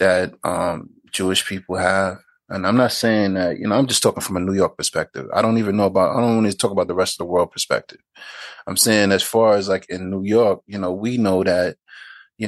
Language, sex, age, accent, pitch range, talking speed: English, male, 30-49, American, 95-115 Hz, 250 wpm